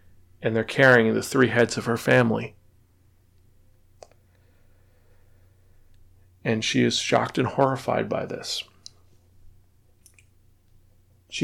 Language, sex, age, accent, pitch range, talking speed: English, male, 40-59, American, 95-125 Hz, 95 wpm